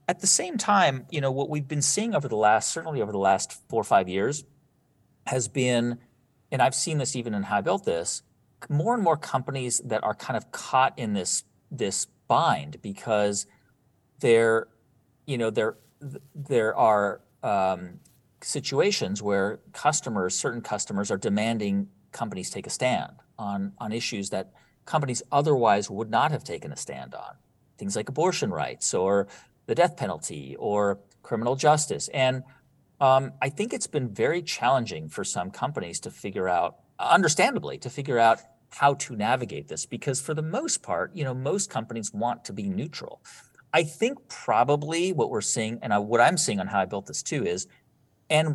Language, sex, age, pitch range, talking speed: English, male, 40-59, 105-145 Hz, 175 wpm